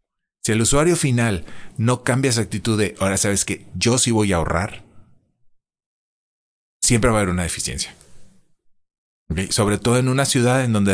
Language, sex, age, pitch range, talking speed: Spanish, male, 30-49, 95-120 Hz, 170 wpm